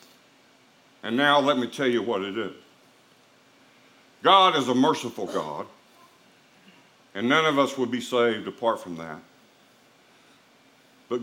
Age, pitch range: 50-69, 120-155 Hz